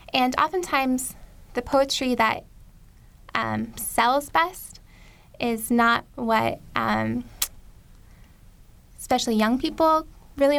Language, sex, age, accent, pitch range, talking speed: English, female, 10-29, American, 195-245 Hz, 90 wpm